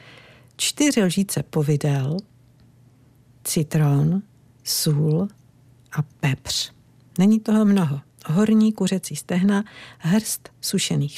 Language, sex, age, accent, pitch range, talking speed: Czech, female, 50-69, native, 145-190 Hz, 80 wpm